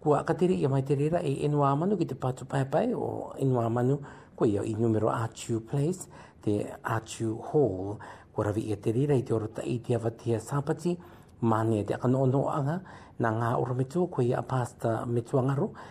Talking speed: 135 wpm